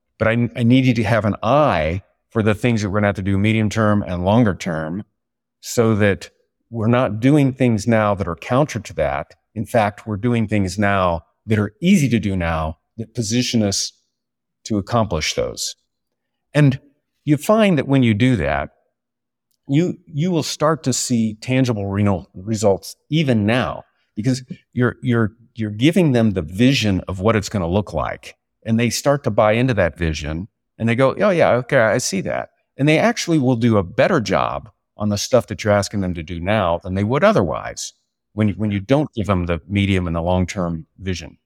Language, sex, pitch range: English, male, 100-125 Hz